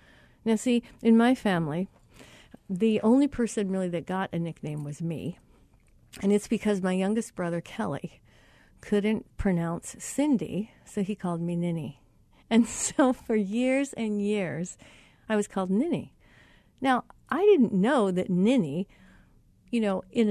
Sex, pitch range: female, 180-250 Hz